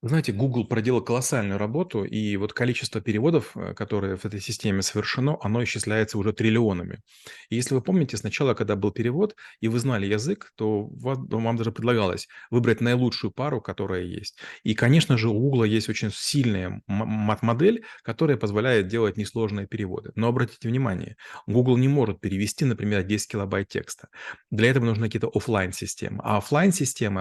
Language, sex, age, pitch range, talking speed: Russian, male, 30-49, 105-120 Hz, 155 wpm